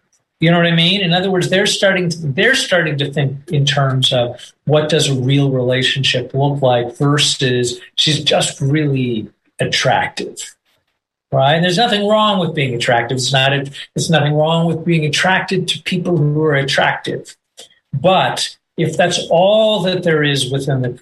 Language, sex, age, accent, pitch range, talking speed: English, male, 50-69, American, 135-170 Hz, 170 wpm